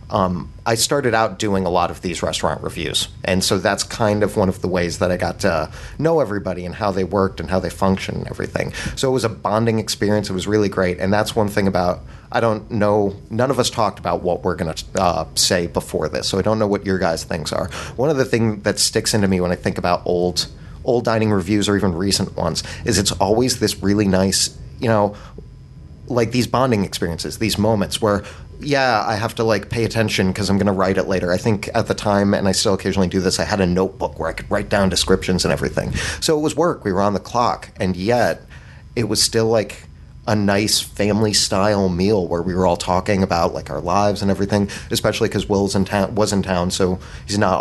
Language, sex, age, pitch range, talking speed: English, male, 30-49, 90-105 Hz, 240 wpm